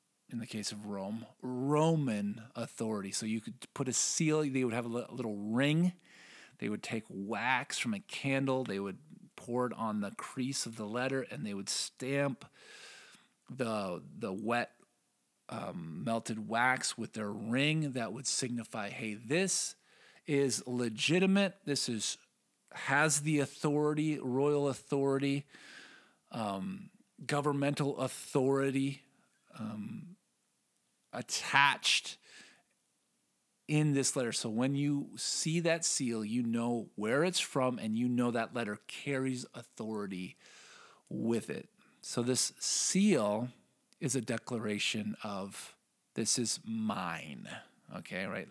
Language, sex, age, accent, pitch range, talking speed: English, male, 40-59, American, 115-150 Hz, 125 wpm